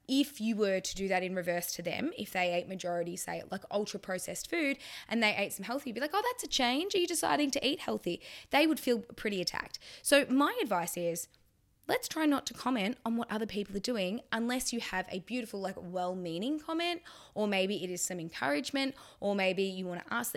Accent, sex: Australian, female